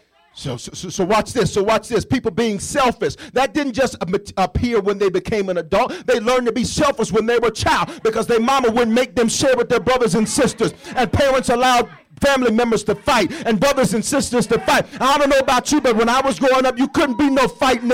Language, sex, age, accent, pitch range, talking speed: English, male, 40-59, American, 220-280 Hz, 240 wpm